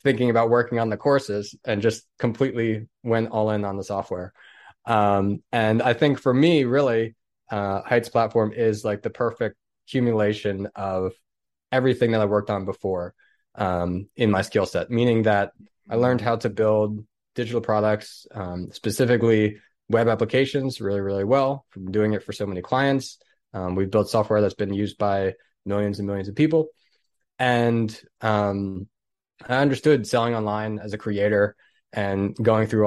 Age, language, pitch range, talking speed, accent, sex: 20-39, English, 105-120 Hz, 165 wpm, American, male